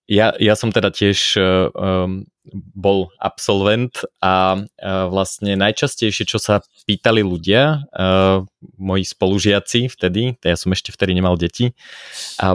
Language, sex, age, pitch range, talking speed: Slovak, male, 20-39, 95-105 Hz, 130 wpm